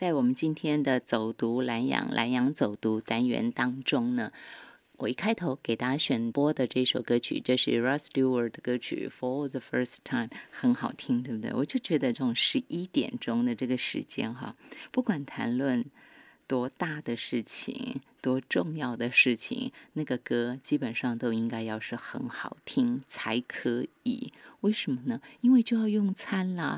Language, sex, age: Chinese, female, 30-49